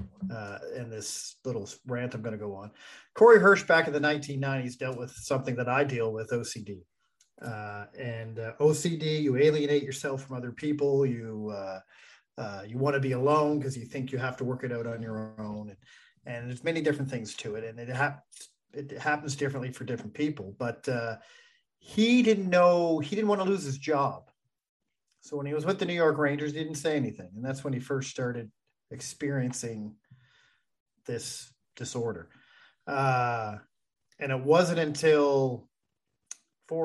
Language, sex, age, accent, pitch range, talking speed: English, male, 40-59, American, 120-150 Hz, 180 wpm